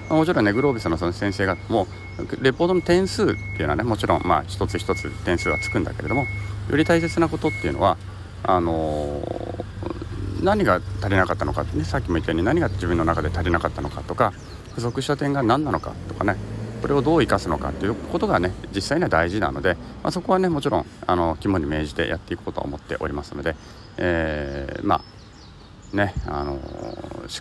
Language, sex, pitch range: Japanese, male, 80-110 Hz